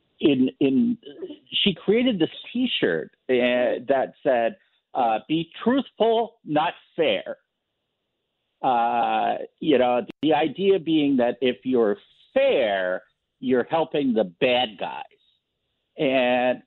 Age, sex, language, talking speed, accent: 50-69, male, English, 110 wpm, American